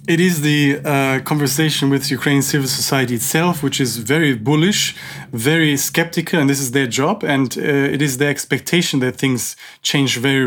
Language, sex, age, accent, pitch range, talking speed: Ukrainian, male, 30-49, German, 135-155 Hz, 180 wpm